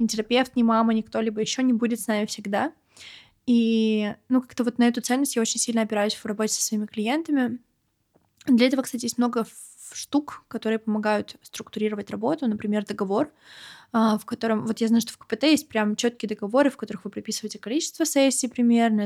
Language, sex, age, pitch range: Russian, female, 20-39, 220-255 Hz